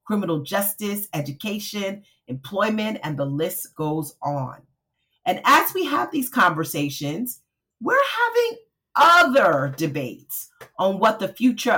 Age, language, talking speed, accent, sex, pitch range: 40-59, English, 115 wpm, American, female, 155-235 Hz